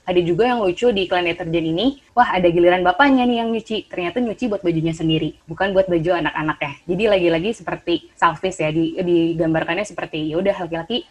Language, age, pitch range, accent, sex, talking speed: English, 20-39, 160-190 Hz, Indonesian, female, 185 wpm